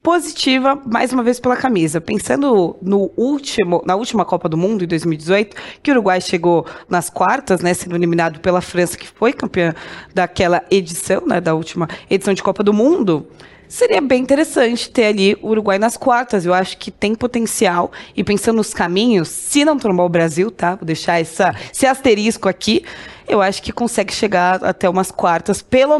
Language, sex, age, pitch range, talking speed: Portuguese, female, 20-39, 185-235 Hz, 180 wpm